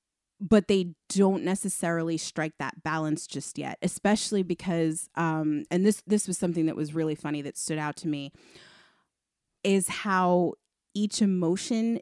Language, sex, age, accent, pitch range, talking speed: English, female, 30-49, American, 165-205 Hz, 150 wpm